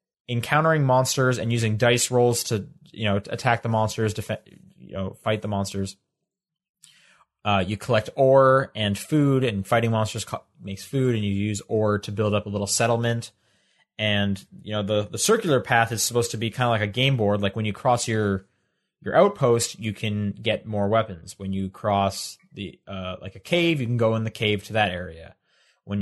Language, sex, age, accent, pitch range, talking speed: English, male, 20-39, American, 105-125 Hz, 200 wpm